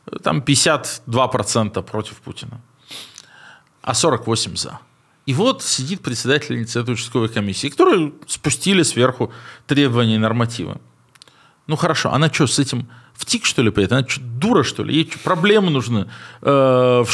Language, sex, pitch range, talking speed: Russian, male, 120-155 Hz, 140 wpm